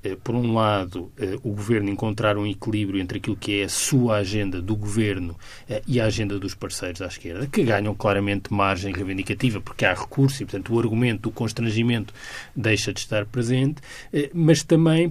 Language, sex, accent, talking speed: Portuguese, male, Brazilian, 175 wpm